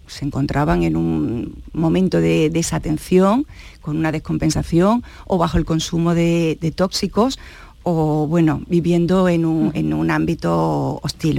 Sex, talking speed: female, 135 wpm